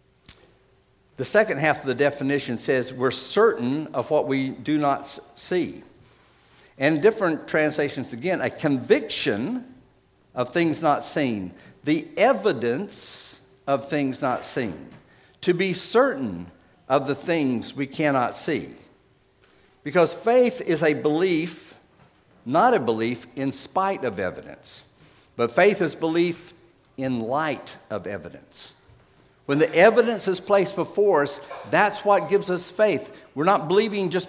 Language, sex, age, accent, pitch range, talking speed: English, male, 60-79, American, 135-180 Hz, 135 wpm